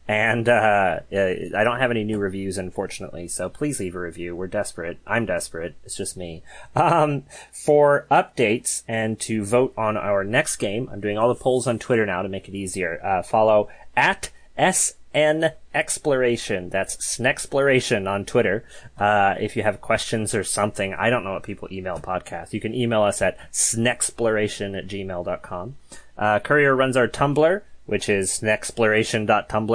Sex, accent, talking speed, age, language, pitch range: male, American, 165 wpm, 30-49, English, 105-135 Hz